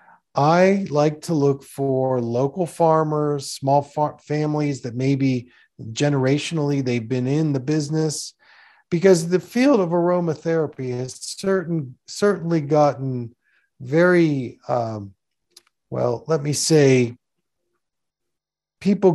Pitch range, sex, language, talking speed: 130-175 Hz, male, English, 100 wpm